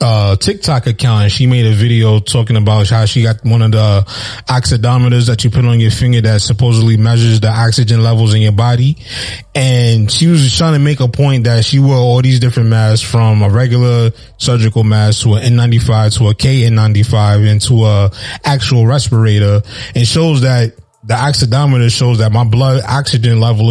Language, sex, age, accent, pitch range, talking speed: English, male, 20-39, American, 115-140 Hz, 185 wpm